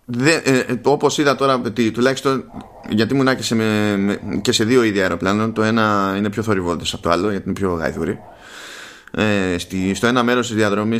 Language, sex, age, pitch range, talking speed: Greek, male, 20-39, 100-120 Hz, 185 wpm